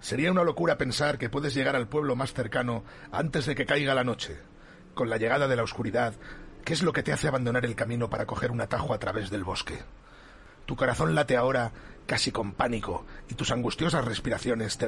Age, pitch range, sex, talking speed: 40-59, 110-130 Hz, male, 210 wpm